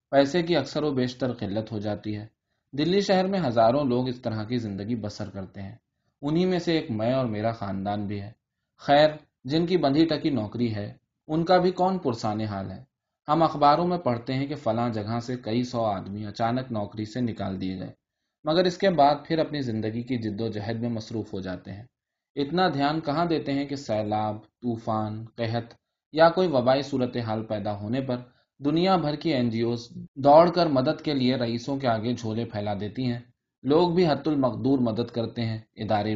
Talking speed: 200 wpm